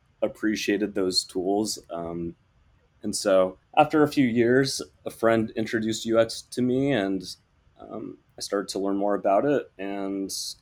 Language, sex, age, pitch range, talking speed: English, male, 20-39, 95-120 Hz, 145 wpm